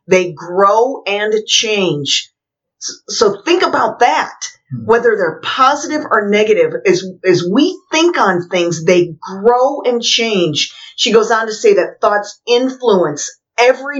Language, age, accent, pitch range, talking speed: English, 40-59, American, 180-255 Hz, 135 wpm